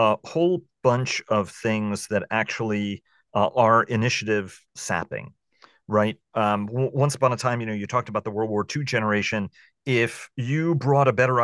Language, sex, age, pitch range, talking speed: English, male, 40-59, 105-135 Hz, 175 wpm